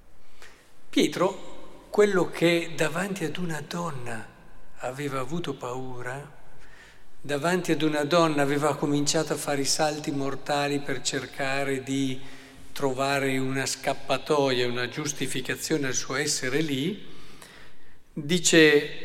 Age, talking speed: 50-69, 105 wpm